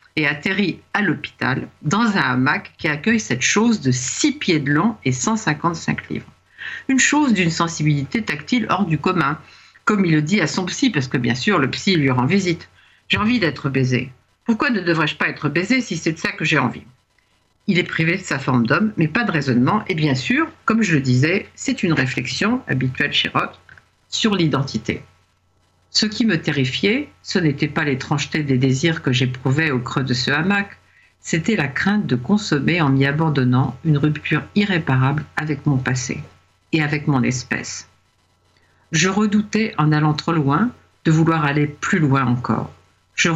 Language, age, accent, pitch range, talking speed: French, 50-69, French, 130-185 Hz, 185 wpm